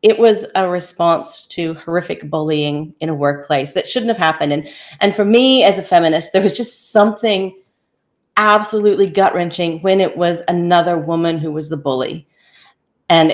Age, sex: 40-59, female